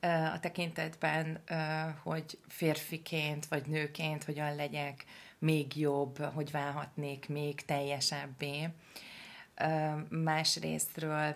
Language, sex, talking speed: Hungarian, female, 80 wpm